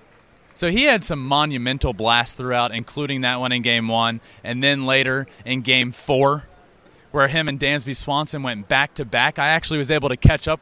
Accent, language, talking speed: American, English, 185 wpm